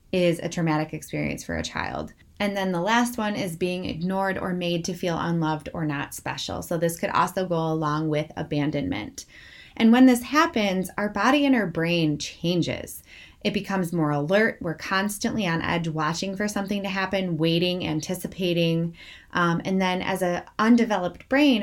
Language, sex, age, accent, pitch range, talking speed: English, female, 20-39, American, 160-195 Hz, 175 wpm